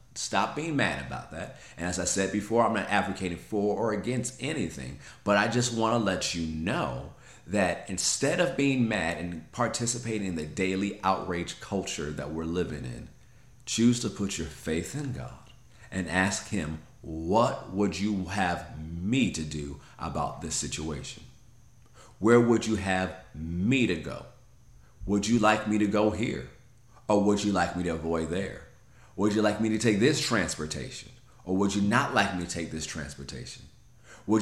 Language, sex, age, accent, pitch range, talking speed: English, male, 40-59, American, 90-120 Hz, 180 wpm